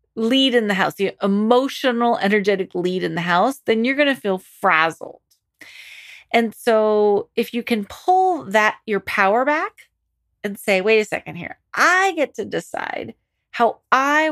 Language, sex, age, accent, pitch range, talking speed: English, female, 30-49, American, 190-240 Hz, 165 wpm